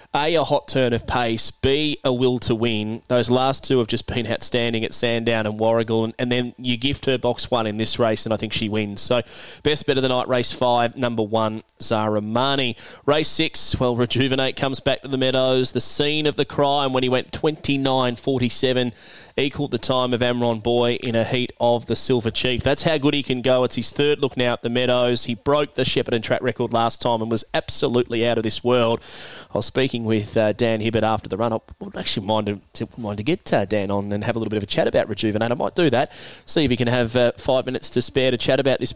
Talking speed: 245 wpm